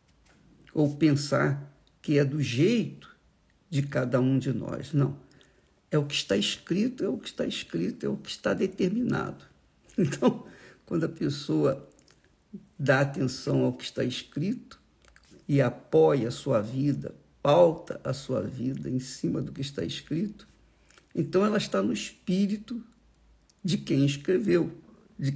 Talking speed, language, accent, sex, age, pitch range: 145 wpm, Portuguese, Brazilian, male, 50-69, 130-180 Hz